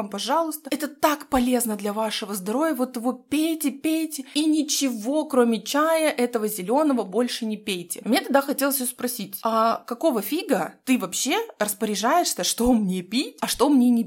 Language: Russian